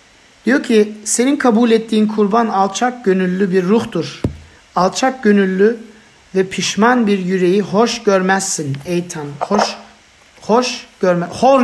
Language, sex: Turkish, male